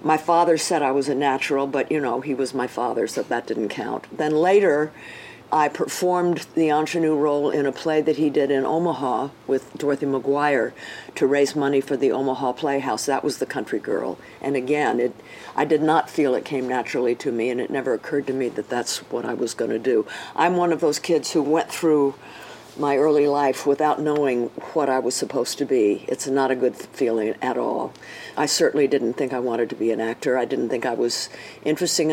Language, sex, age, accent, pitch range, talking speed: English, female, 50-69, American, 135-165 Hz, 215 wpm